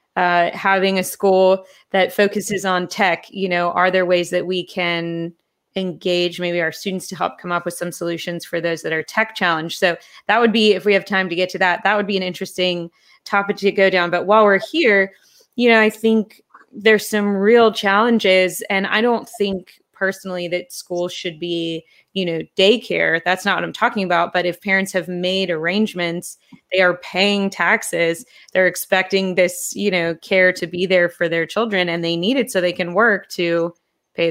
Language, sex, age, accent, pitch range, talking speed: English, female, 20-39, American, 175-200 Hz, 205 wpm